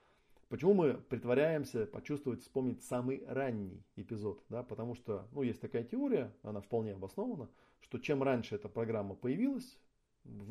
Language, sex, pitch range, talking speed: Russian, male, 110-135 Hz, 145 wpm